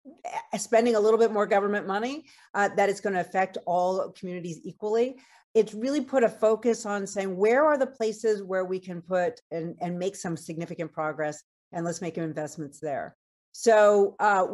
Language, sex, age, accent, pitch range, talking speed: English, female, 40-59, American, 170-215 Hz, 180 wpm